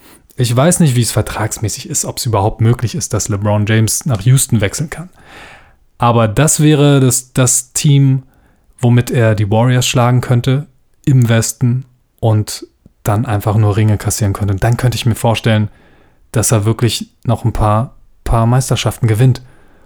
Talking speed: 165 wpm